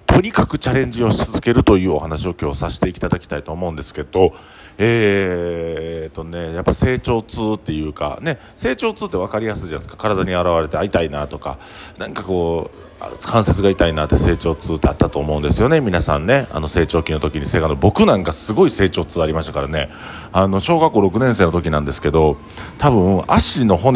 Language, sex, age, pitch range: Japanese, male, 40-59, 80-110 Hz